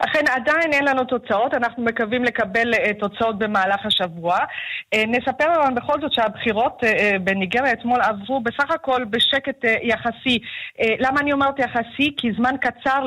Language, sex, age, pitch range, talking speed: Hebrew, female, 40-59, 205-260 Hz, 140 wpm